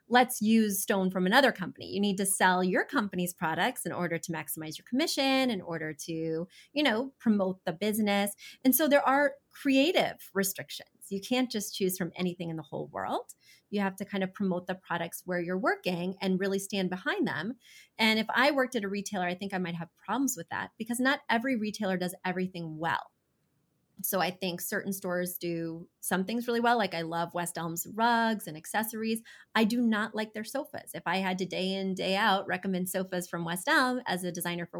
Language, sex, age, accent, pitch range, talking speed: English, female, 30-49, American, 180-235 Hz, 210 wpm